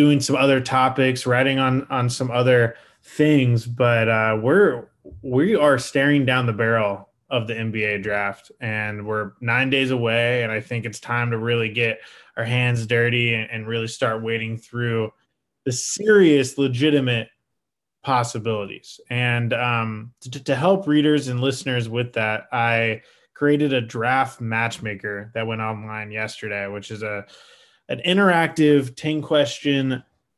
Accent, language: American, English